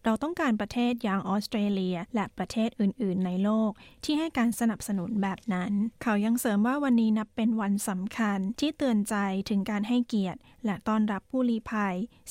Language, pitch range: Thai, 195-230 Hz